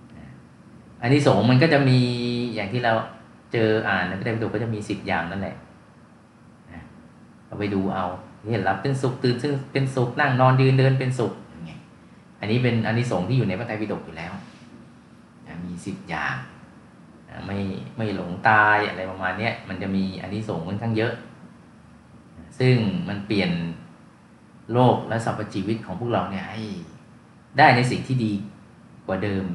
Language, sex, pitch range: Thai, male, 95-115 Hz